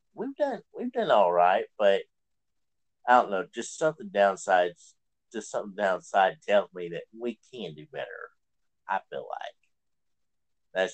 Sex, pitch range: male, 85-125 Hz